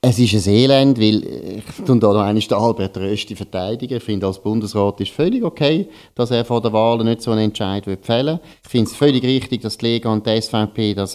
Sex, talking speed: male, 220 wpm